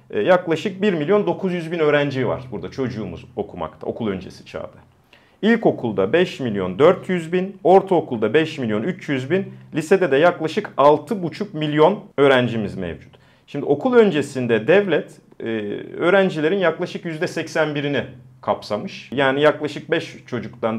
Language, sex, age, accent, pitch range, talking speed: Turkish, male, 40-59, native, 125-180 Hz, 130 wpm